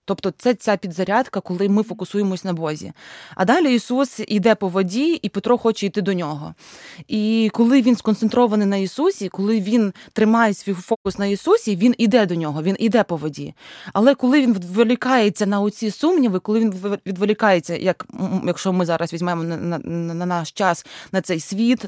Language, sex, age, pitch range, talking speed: Ukrainian, female, 20-39, 180-220 Hz, 180 wpm